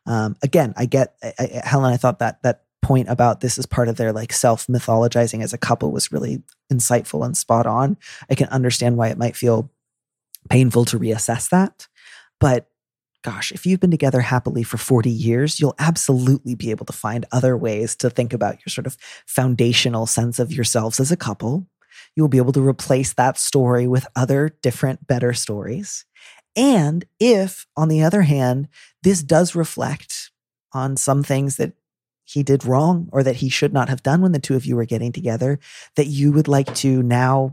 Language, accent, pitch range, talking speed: English, American, 120-150 Hz, 190 wpm